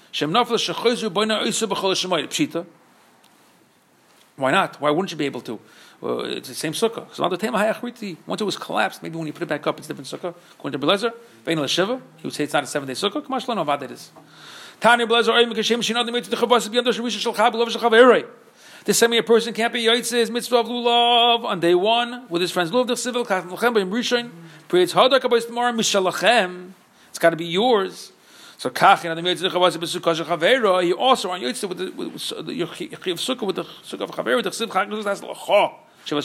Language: English